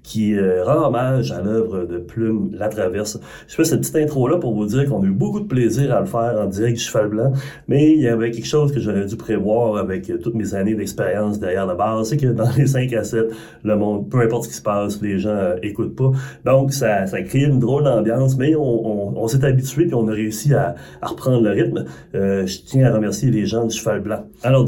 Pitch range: 105-140 Hz